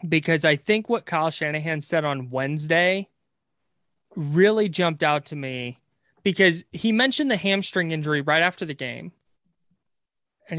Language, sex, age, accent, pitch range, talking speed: English, male, 20-39, American, 145-180 Hz, 140 wpm